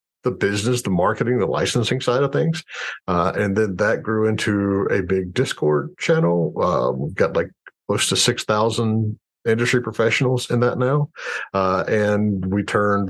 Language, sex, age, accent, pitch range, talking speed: English, male, 50-69, American, 100-120 Hz, 160 wpm